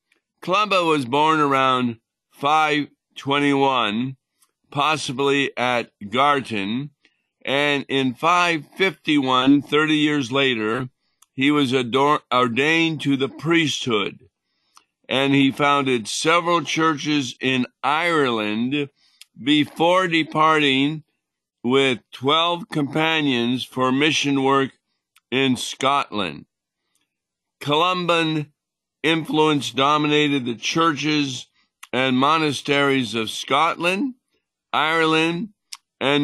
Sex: male